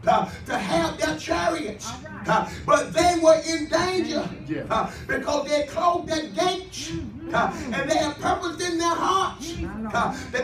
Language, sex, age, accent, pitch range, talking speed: English, male, 40-59, American, 325-385 Hz, 155 wpm